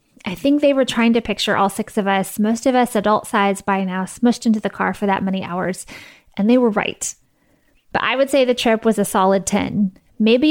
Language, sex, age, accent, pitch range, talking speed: English, female, 20-39, American, 200-240 Hz, 230 wpm